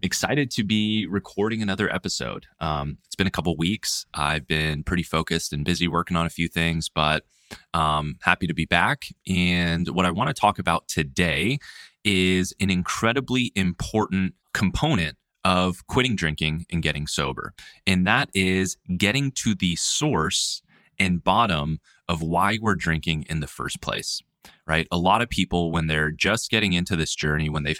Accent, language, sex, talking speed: American, English, male, 175 wpm